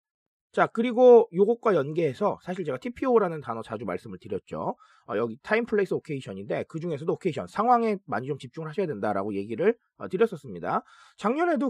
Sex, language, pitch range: male, Korean, 165-245 Hz